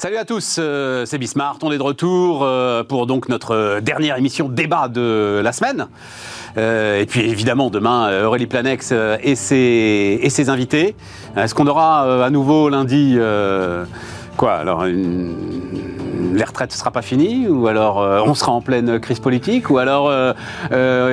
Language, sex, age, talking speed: French, male, 40-59, 160 wpm